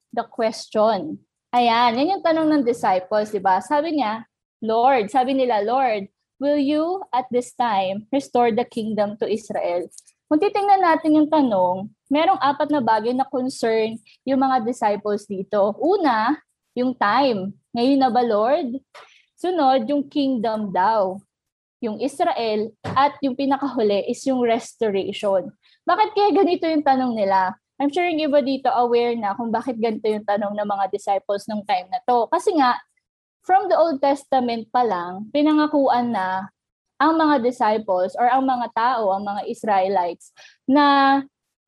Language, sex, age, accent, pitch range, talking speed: Filipino, female, 20-39, native, 215-280 Hz, 155 wpm